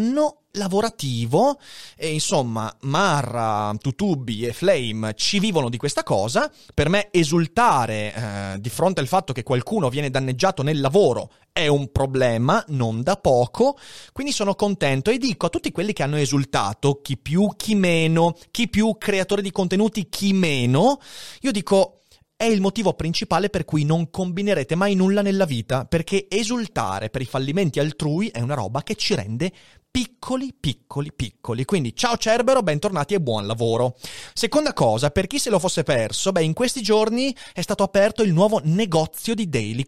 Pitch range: 130-200 Hz